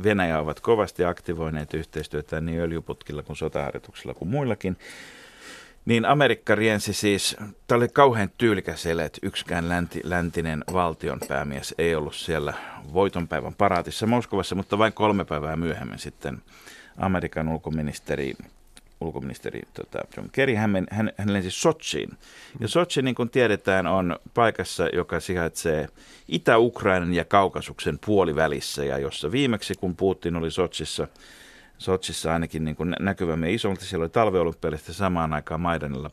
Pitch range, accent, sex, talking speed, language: 80-110 Hz, native, male, 130 wpm, Finnish